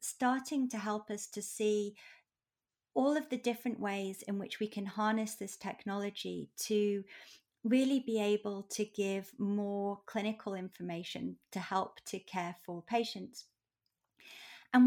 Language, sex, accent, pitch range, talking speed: English, female, British, 195-240 Hz, 135 wpm